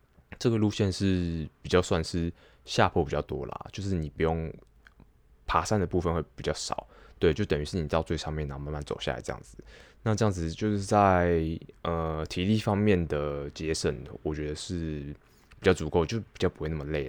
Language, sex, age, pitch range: Chinese, male, 20-39, 75-90 Hz